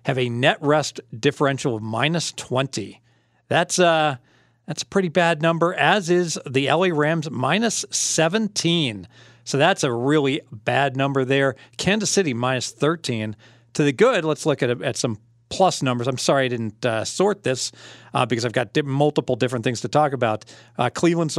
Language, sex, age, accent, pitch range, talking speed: English, male, 50-69, American, 125-160 Hz, 175 wpm